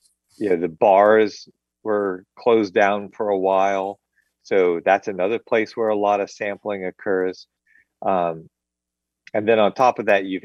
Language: English